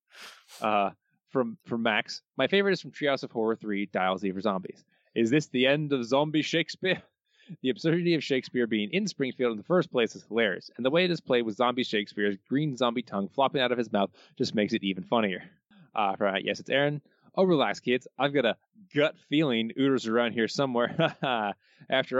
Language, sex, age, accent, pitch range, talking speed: English, male, 20-39, American, 120-175 Hz, 210 wpm